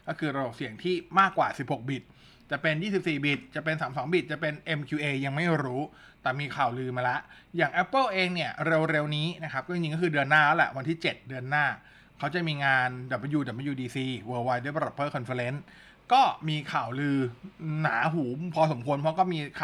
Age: 20-39